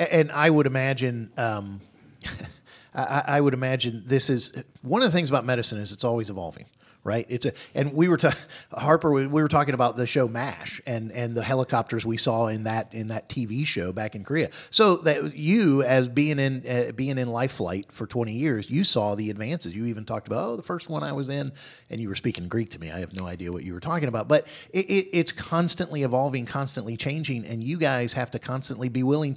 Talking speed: 230 wpm